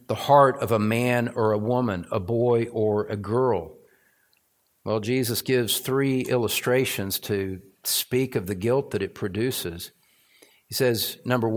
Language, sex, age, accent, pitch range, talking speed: English, male, 50-69, American, 125-180 Hz, 150 wpm